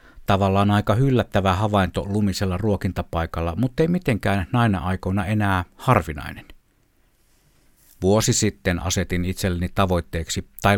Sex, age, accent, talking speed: male, 60-79, native, 105 wpm